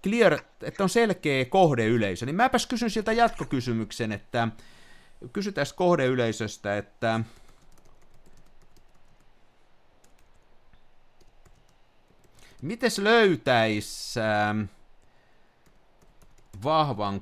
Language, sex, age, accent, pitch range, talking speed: Finnish, male, 50-69, native, 110-180 Hz, 60 wpm